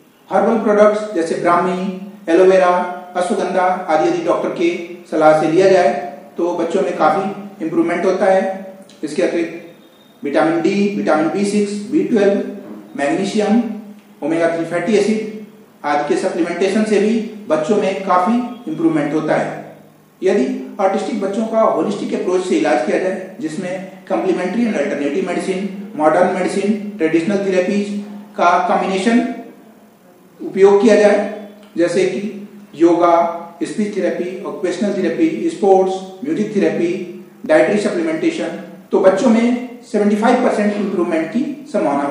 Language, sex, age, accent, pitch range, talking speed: Hindi, male, 40-59, native, 180-210 Hz, 130 wpm